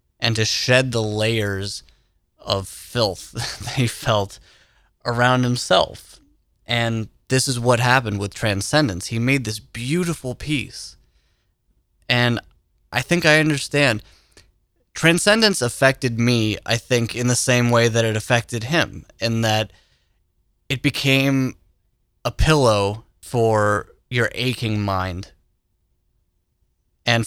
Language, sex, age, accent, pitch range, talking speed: English, male, 20-39, American, 100-125 Hz, 115 wpm